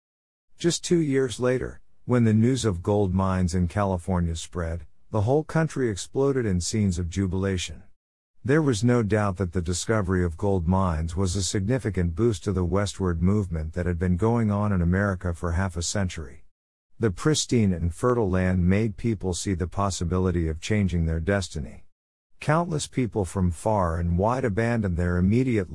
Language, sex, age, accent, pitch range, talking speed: English, male, 50-69, American, 90-110 Hz, 170 wpm